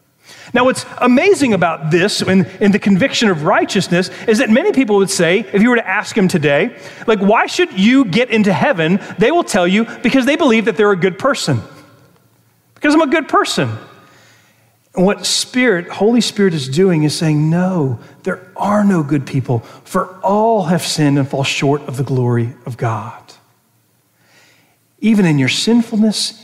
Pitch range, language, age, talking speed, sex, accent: 145-215 Hz, English, 40-59, 180 wpm, male, American